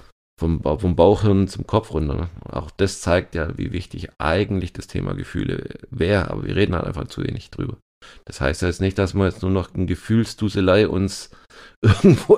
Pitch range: 85-100 Hz